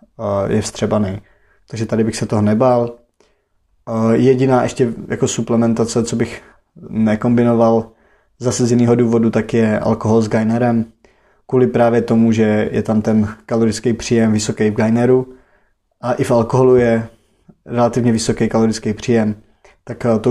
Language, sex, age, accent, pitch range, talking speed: Czech, male, 20-39, native, 110-120 Hz, 140 wpm